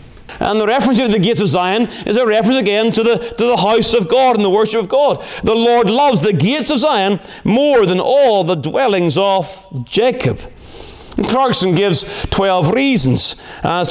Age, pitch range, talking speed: 40-59, 175-220 Hz, 190 wpm